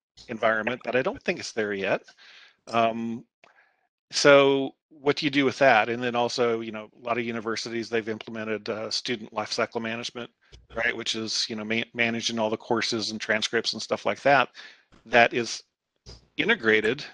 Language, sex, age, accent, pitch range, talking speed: English, male, 40-59, American, 110-130 Hz, 180 wpm